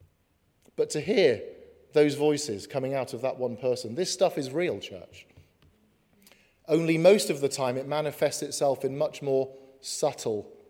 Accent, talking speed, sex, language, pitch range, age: British, 155 wpm, male, English, 130-185 Hz, 40-59